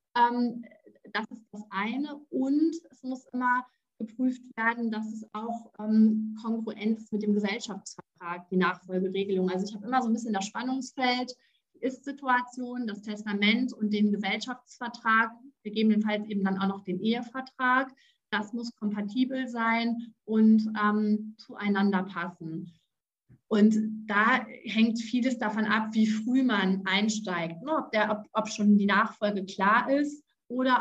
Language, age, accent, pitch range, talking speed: German, 30-49, German, 200-230 Hz, 135 wpm